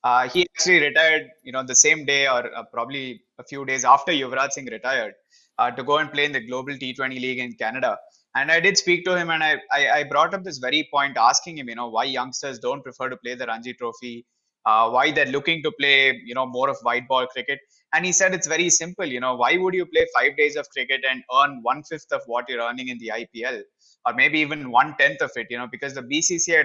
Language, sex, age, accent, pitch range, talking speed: English, male, 20-39, Indian, 125-165 Hz, 250 wpm